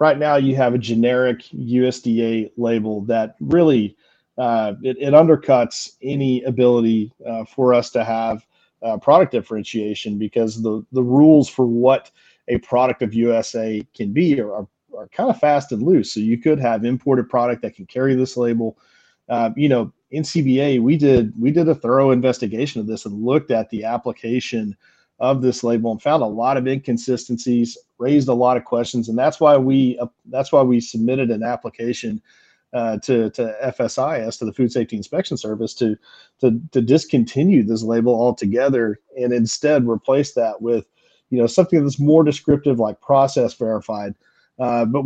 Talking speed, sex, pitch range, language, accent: 170 wpm, male, 115-135 Hz, English, American